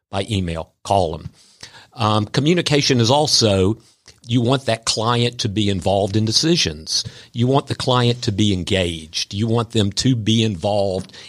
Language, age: English, 50-69